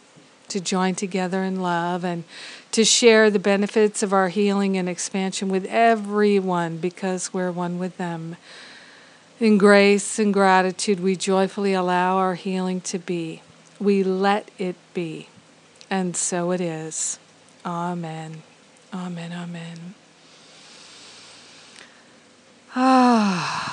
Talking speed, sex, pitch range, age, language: 115 wpm, female, 185-215 Hz, 50-69, English